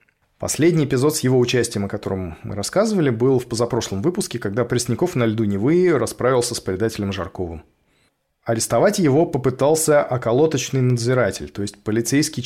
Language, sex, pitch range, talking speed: Russian, male, 115-150 Hz, 145 wpm